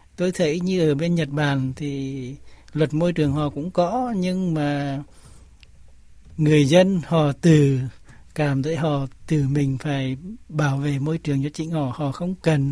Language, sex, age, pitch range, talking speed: Vietnamese, male, 60-79, 140-160 Hz, 170 wpm